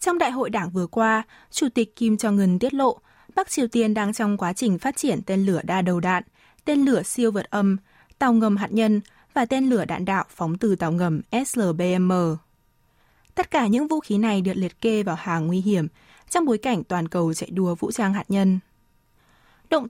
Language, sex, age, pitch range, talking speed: Vietnamese, female, 20-39, 180-235 Hz, 215 wpm